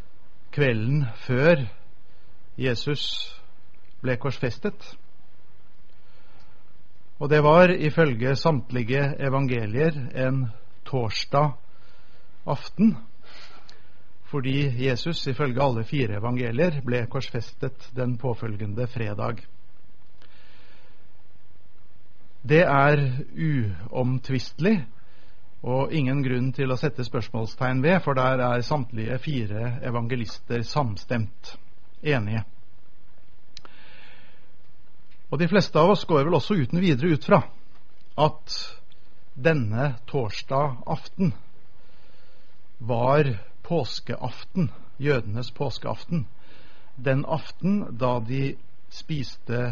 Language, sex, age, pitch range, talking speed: Danish, male, 50-69, 110-145 Hz, 80 wpm